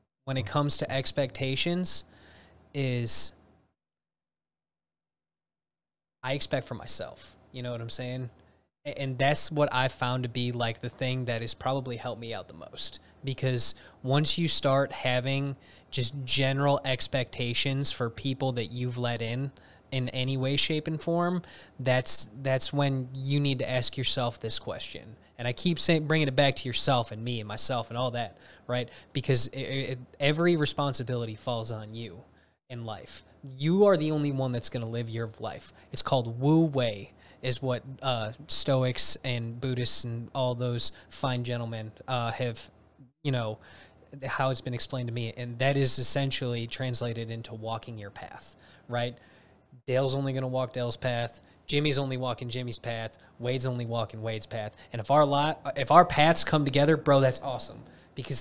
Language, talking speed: English, 170 wpm